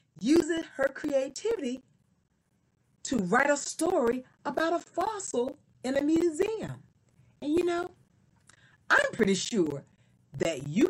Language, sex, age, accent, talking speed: English, female, 40-59, American, 115 wpm